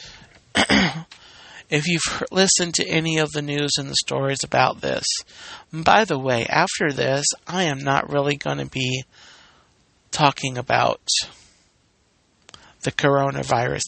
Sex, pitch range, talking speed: male, 130-155 Hz, 125 wpm